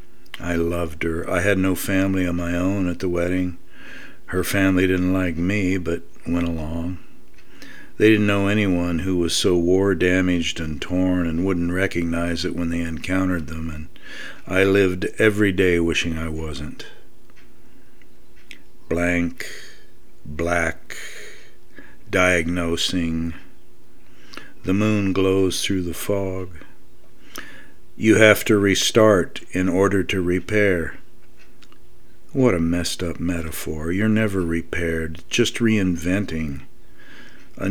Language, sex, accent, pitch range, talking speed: English, male, American, 85-100 Hz, 120 wpm